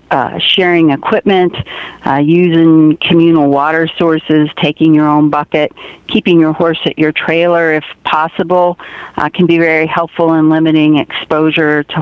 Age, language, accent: 50-69, English, American